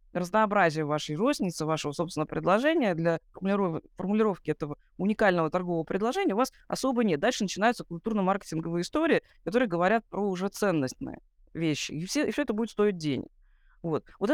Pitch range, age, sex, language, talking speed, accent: 165-220 Hz, 20-39, female, Russian, 150 wpm, native